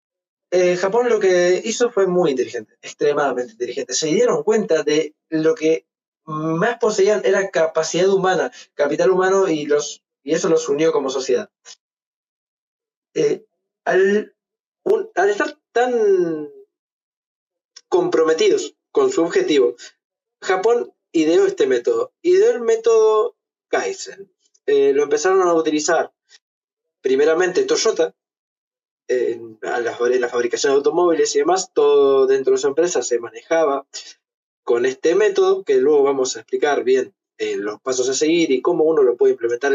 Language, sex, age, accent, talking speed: Spanish, male, 20-39, Argentinian, 135 wpm